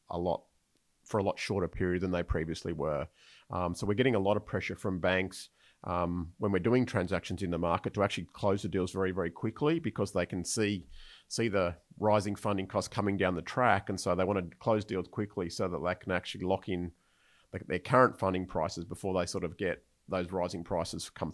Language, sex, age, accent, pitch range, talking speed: English, male, 40-59, Australian, 90-100 Hz, 220 wpm